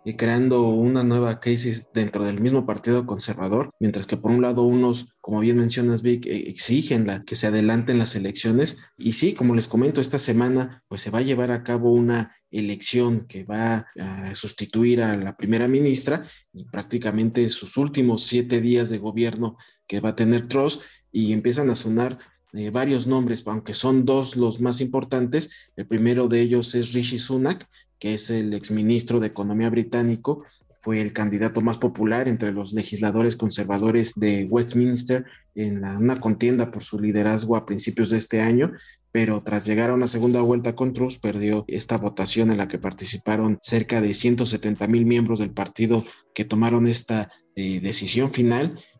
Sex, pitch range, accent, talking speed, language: male, 105-120 Hz, Mexican, 175 wpm, Spanish